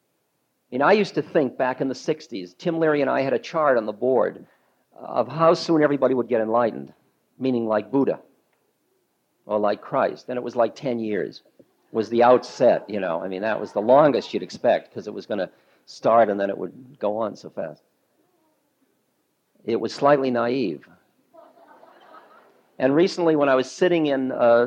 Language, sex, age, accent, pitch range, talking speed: English, male, 50-69, American, 110-145 Hz, 185 wpm